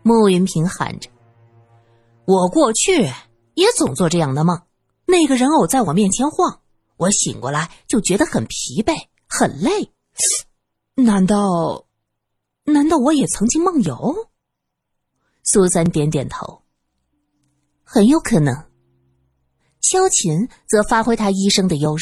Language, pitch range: Chinese, 160-255 Hz